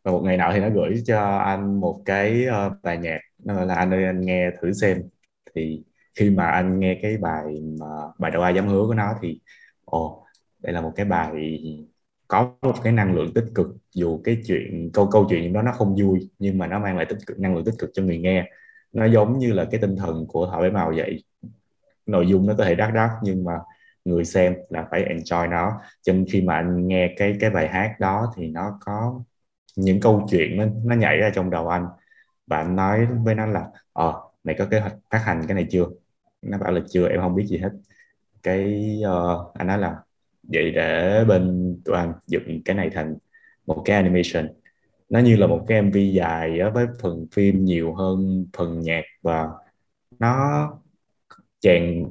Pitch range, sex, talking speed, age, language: 85-105 Hz, male, 215 wpm, 20-39, Vietnamese